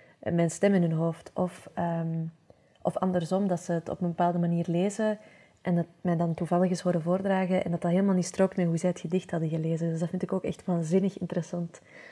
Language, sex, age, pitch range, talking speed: Dutch, female, 20-39, 170-185 Hz, 235 wpm